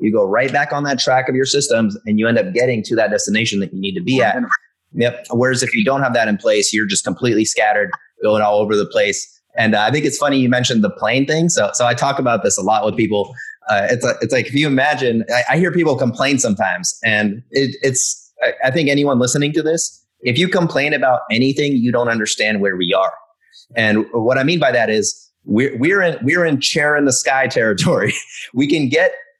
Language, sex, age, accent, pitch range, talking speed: English, male, 30-49, American, 120-155 Hz, 240 wpm